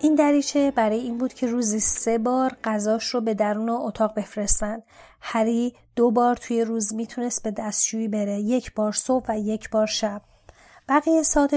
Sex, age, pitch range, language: female, 30-49, 210-240 Hz, Persian